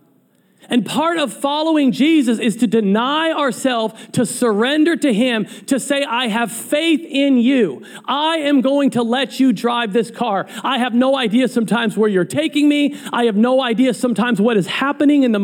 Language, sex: English, male